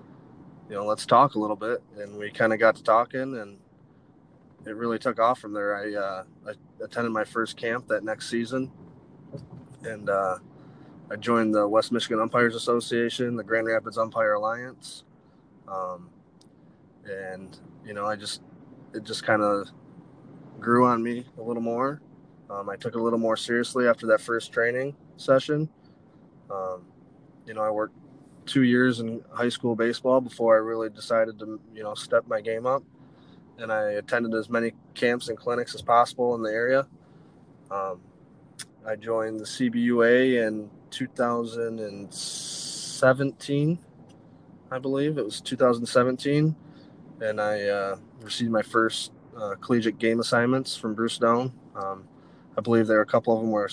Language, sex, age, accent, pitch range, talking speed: English, male, 20-39, American, 110-125 Hz, 160 wpm